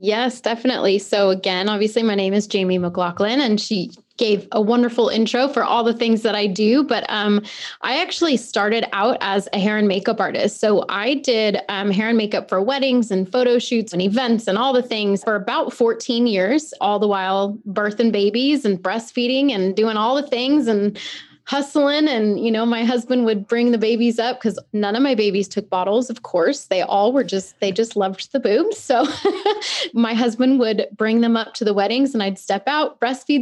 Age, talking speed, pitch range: 20-39, 205 wpm, 195-240 Hz